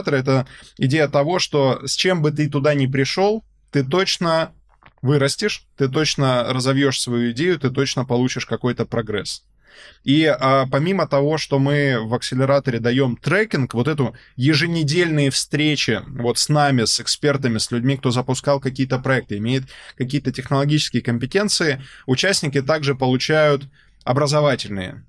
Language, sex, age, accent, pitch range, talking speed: Russian, male, 20-39, native, 120-140 Hz, 135 wpm